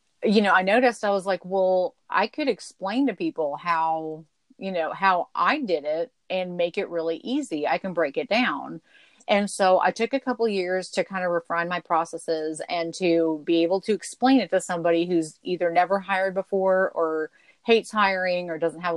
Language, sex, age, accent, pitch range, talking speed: English, female, 30-49, American, 165-200 Hz, 200 wpm